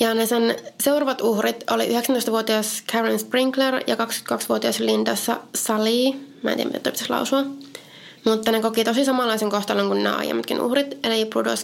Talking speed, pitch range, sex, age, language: 155 wpm, 170-260 Hz, female, 20-39, Finnish